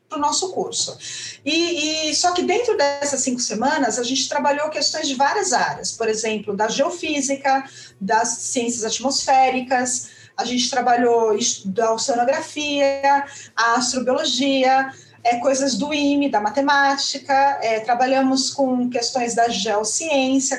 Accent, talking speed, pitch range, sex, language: Brazilian, 130 wpm, 245-300 Hz, female, Portuguese